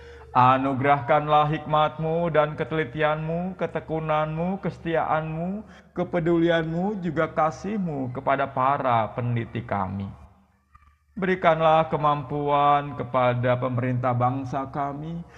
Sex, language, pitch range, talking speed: male, Indonesian, 125-160 Hz, 75 wpm